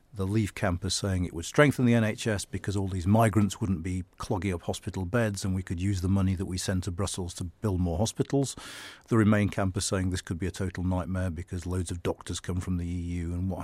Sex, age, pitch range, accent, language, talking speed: male, 40-59, 90-105 Hz, British, English, 245 wpm